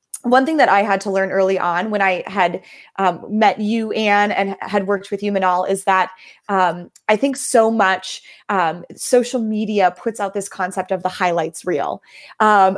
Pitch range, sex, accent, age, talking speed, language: 195-245 Hz, female, American, 20-39, 195 wpm, English